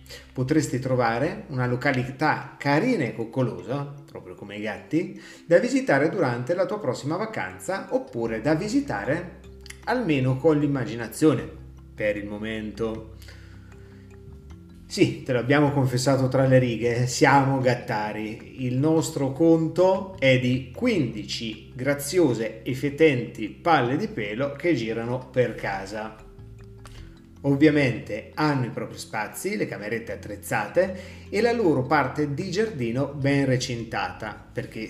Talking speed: 120 wpm